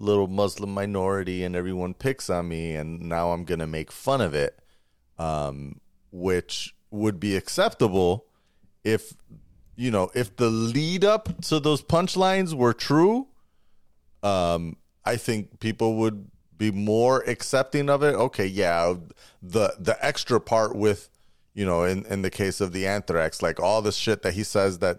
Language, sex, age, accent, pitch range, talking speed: English, male, 30-49, American, 90-125 Hz, 165 wpm